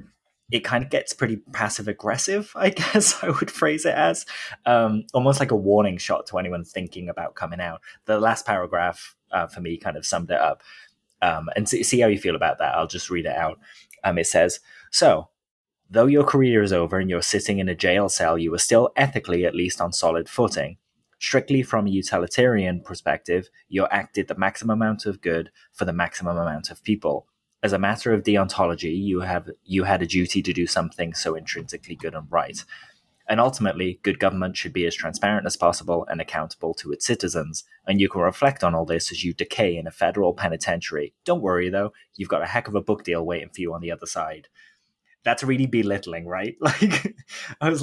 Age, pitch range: 20-39, 90-120 Hz